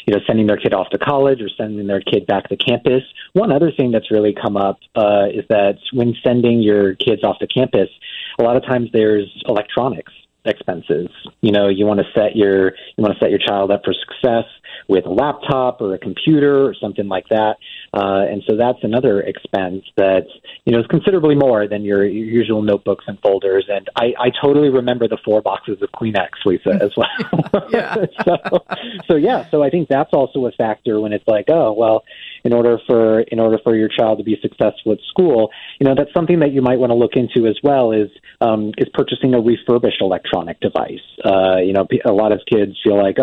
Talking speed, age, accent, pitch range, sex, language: 215 wpm, 30-49, American, 100-130 Hz, male, English